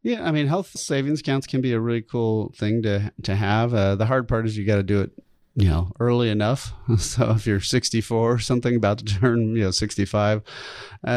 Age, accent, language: 30-49, American, English